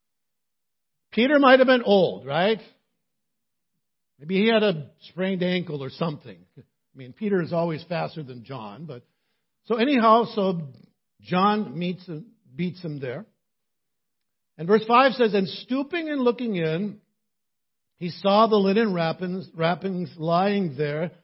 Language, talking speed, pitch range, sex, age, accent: English, 135 wpm, 165-220 Hz, male, 60-79, American